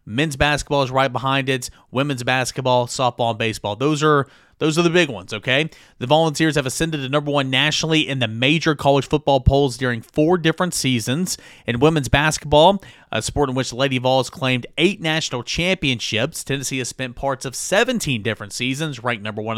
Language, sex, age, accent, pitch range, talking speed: English, male, 30-49, American, 120-155 Hz, 185 wpm